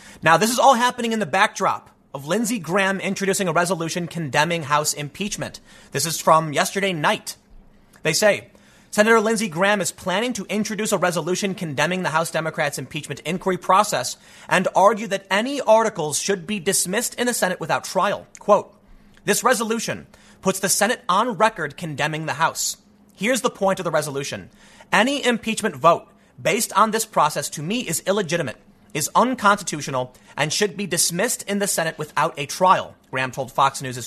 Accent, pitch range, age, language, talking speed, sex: American, 155-210 Hz, 30-49, English, 170 wpm, male